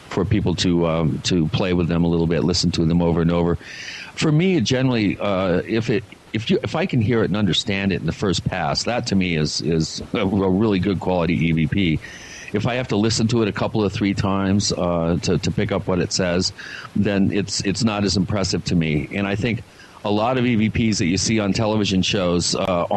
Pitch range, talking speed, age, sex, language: 85-110 Hz, 235 wpm, 50-69, male, English